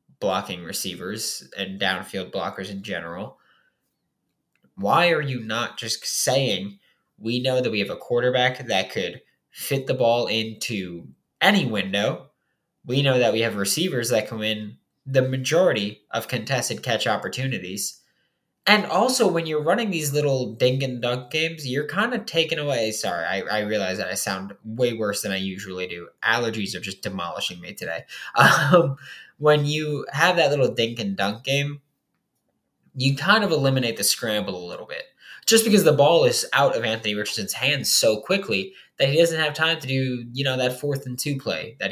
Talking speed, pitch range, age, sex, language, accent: 180 wpm, 110-155 Hz, 20-39, male, English, American